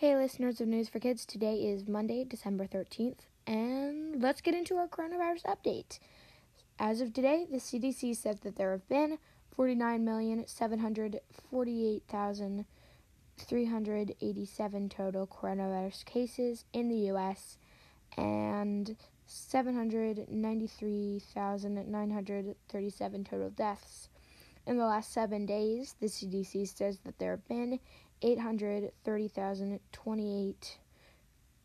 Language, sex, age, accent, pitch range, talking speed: English, female, 10-29, American, 200-235 Hz, 100 wpm